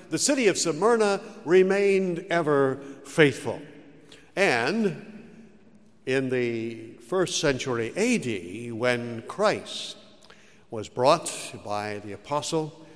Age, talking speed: 60-79, 95 wpm